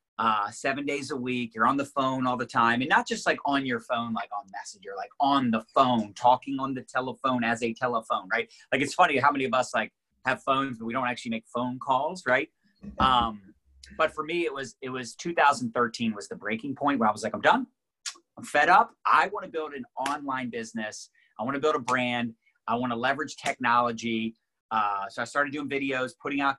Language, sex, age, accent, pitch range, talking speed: English, male, 30-49, American, 115-140 Hz, 225 wpm